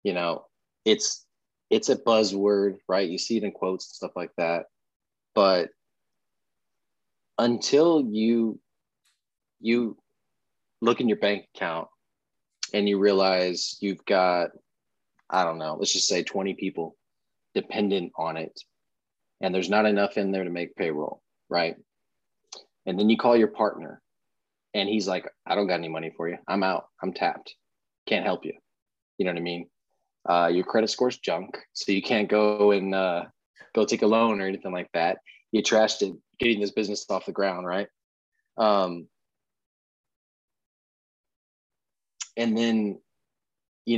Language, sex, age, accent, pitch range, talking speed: English, male, 30-49, American, 90-105 Hz, 155 wpm